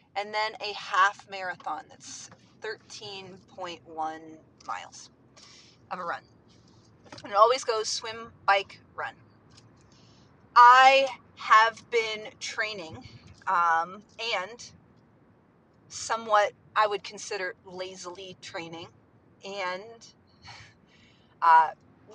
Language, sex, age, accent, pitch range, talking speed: English, female, 30-49, American, 170-215 Hz, 85 wpm